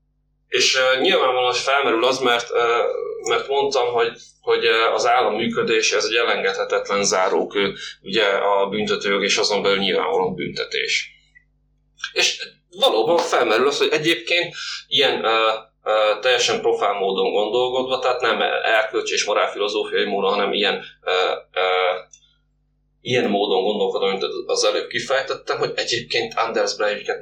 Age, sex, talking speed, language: 30-49, male, 125 wpm, Hungarian